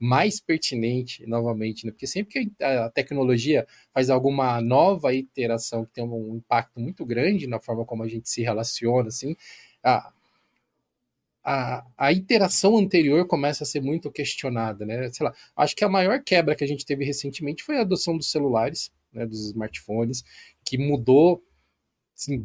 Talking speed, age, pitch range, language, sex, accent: 165 wpm, 20-39, 125-165 Hz, Portuguese, male, Brazilian